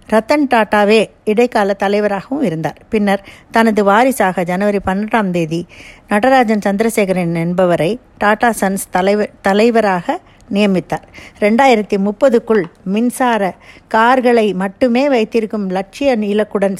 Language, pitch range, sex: Tamil, 195-240 Hz, female